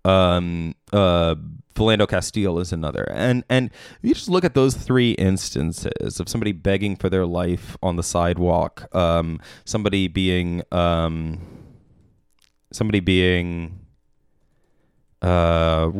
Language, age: English, 20-39